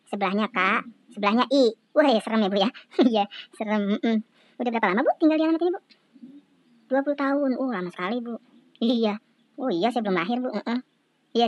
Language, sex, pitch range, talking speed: Indonesian, male, 210-275 Hz, 190 wpm